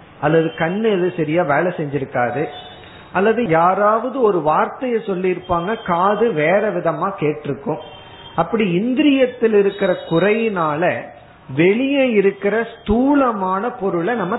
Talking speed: 105 wpm